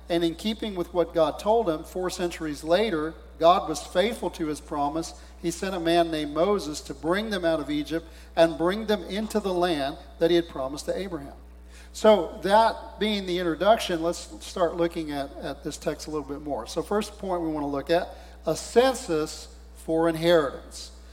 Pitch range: 155-180 Hz